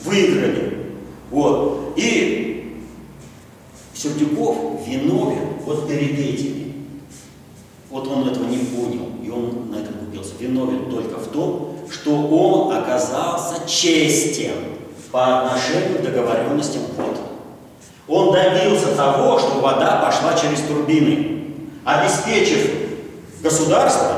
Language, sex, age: Russian, male, 40-59